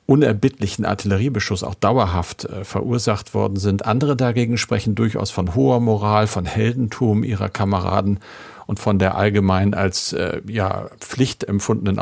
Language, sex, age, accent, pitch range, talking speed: German, male, 50-69, German, 100-110 Hz, 140 wpm